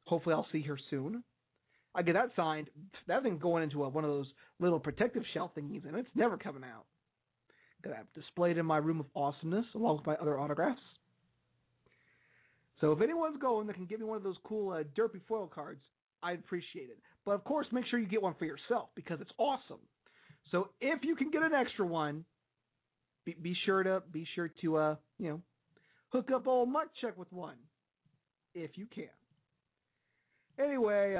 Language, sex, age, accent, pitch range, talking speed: English, male, 30-49, American, 160-235 Hz, 190 wpm